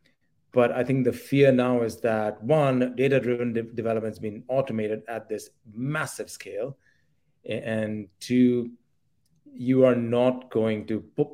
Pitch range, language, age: 110-125 Hz, English, 30-49